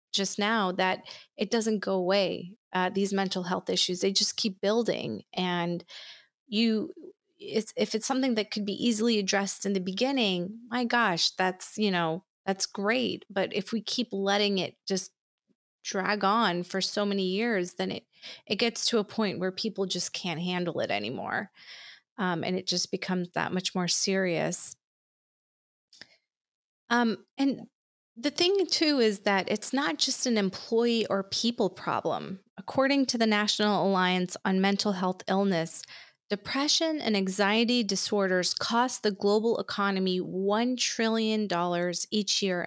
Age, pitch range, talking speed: 30-49, 190-235 Hz, 155 wpm